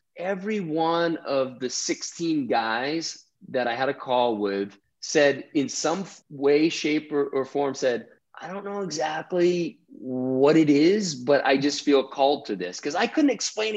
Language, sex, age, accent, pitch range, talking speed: English, male, 20-39, American, 120-165 Hz, 170 wpm